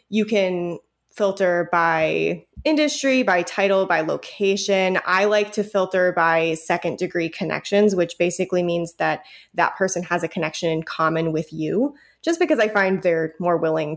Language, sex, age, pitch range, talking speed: English, female, 20-39, 175-200 Hz, 160 wpm